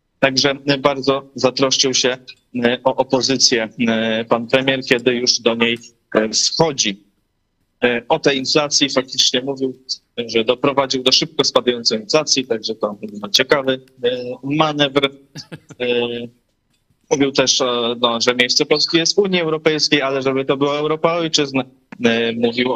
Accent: native